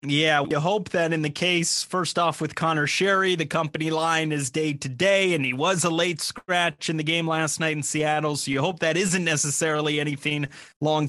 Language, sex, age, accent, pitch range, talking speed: English, male, 30-49, American, 150-175 Hz, 215 wpm